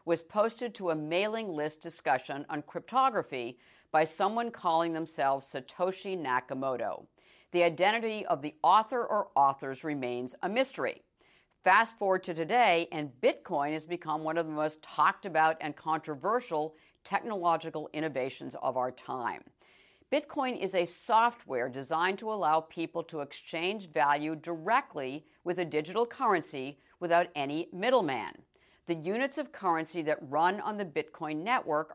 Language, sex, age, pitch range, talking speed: English, female, 50-69, 150-195 Hz, 140 wpm